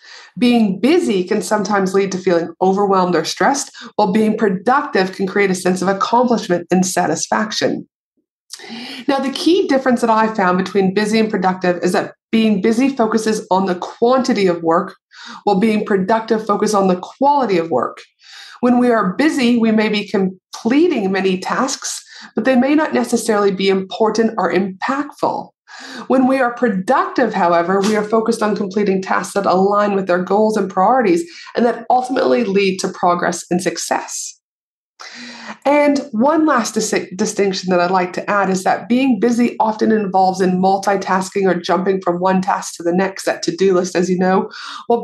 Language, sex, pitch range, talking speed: English, female, 190-240 Hz, 170 wpm